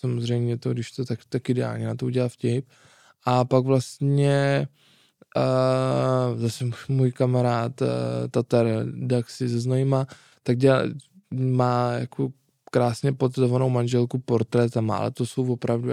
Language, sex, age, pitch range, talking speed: Czech, male, 20-39, 120-135 Hz, 140 wpm